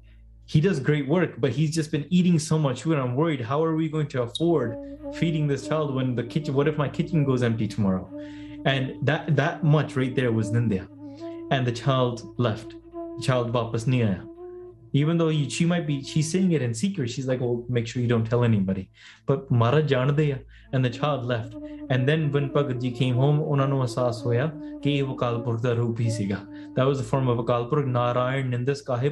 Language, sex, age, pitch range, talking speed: English, male, 20-39, 120-150 Hz, 190 wpm